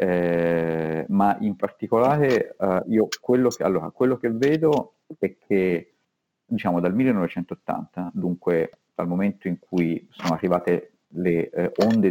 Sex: male